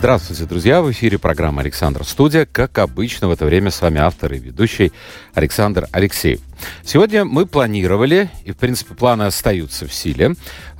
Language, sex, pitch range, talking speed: Russian, male, 95-135 Hz, 160 wpm